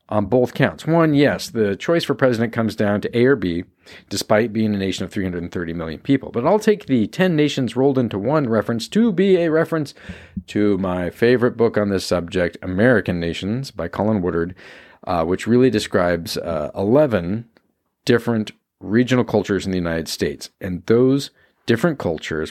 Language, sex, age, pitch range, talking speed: English, male, 40-59, 95-135 Hz, 175 wpm